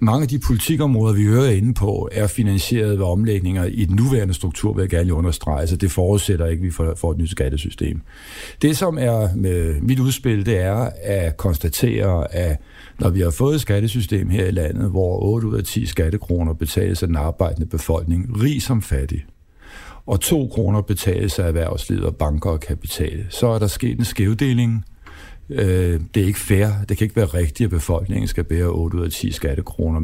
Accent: native